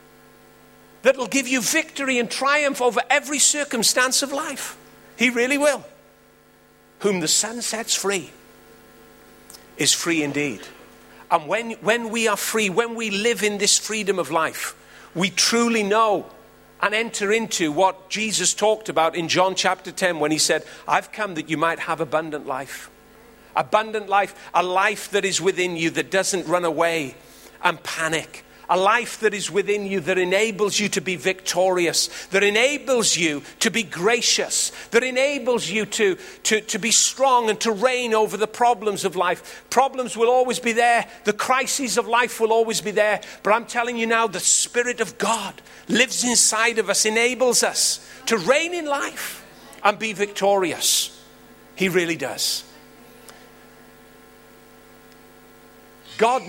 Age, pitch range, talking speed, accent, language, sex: 40-59, 185-235 Hz, 155 wpm, British, English, male